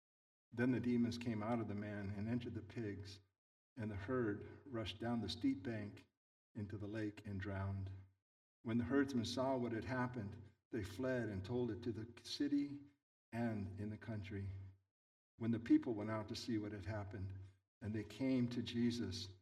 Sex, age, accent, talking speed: male, 60-79, American, 180 wpm